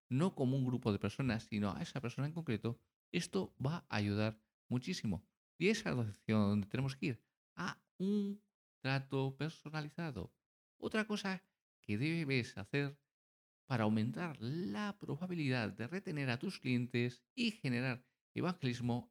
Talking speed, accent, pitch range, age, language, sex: 140 wpm, Spanish, 110-160 Hz, 50-69, Spanish, male